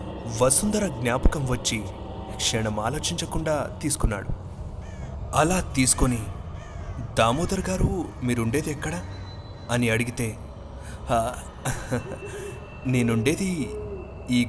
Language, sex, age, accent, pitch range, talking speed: Telugu, male, 30-49, native, 100-135 Hz, 65 wpm